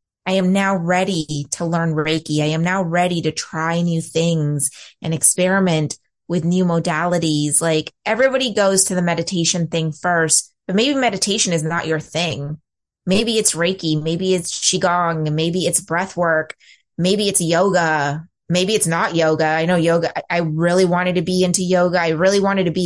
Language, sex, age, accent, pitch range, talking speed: English, female, 20-39, American, 165-195 Hz, 175 wpm